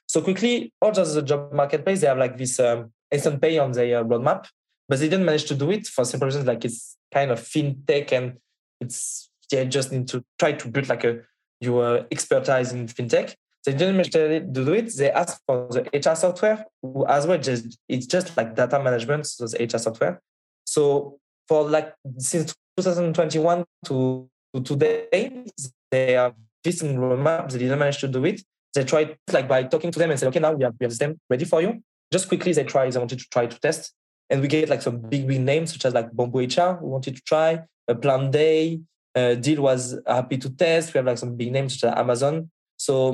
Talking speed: 215 wpm